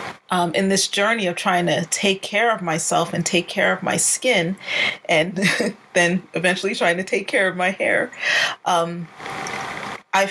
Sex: female